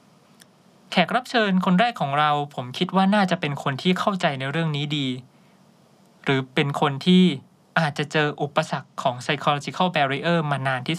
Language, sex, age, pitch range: Thai, male, 20-39, 145-190 Hz